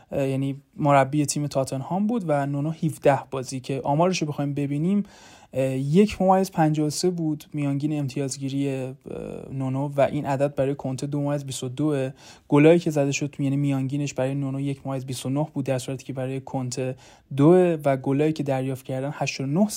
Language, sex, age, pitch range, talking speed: Persian, male, 30-49, 135-160 Hz, 145 wpm